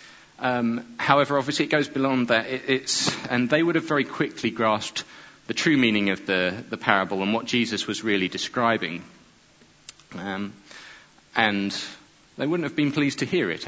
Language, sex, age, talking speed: English, male, 40-59, 170 wpm